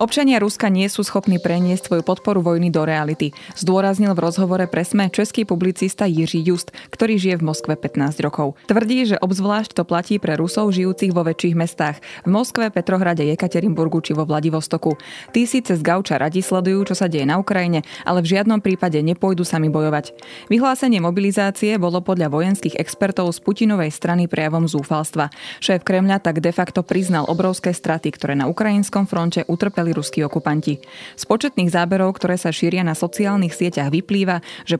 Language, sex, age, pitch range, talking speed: Slovak, female, 20-39, 160-195 Hz, 165 wpm